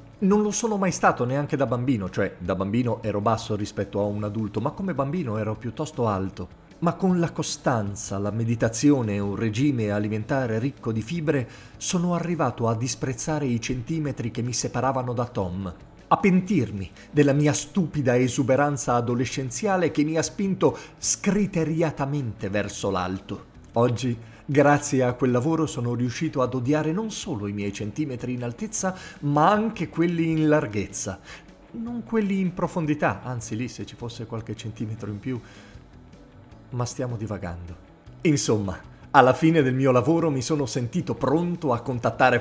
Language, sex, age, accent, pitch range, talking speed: Italian, male, 40-59, native, 110-165 Hz, 155 wpm